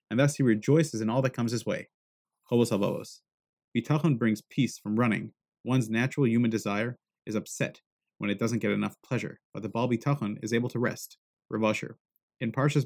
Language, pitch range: English, 110-140 Hz